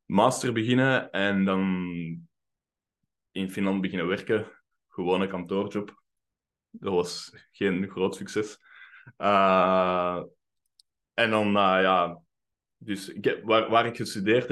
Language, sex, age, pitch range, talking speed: Dutch, male, 20-39, 90-100 Hz, 105 wpm